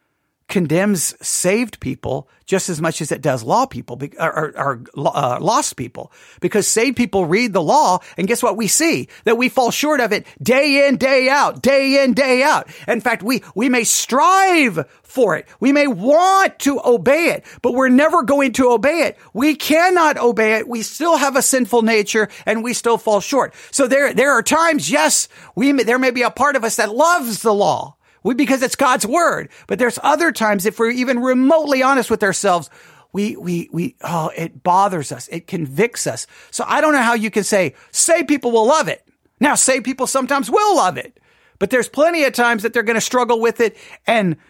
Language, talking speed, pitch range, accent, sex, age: English, 210 wpm, 200-275 Hz, American, male, 50-69